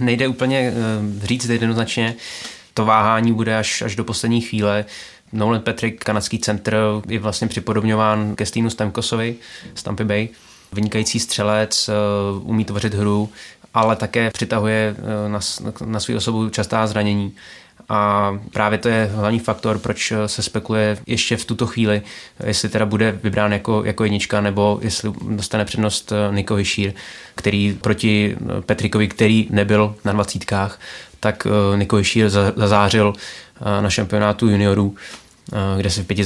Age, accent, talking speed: 20-39, native, 130 wpm